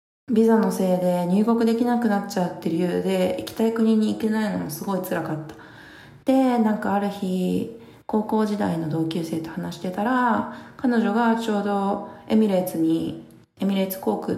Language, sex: Japanese, female